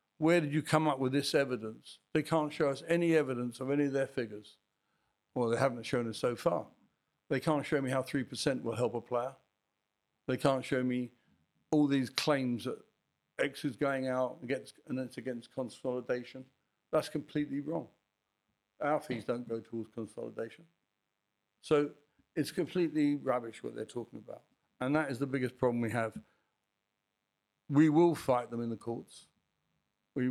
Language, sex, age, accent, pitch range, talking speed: English, male, 60-79, British, 115-145 Hz, 170 wpm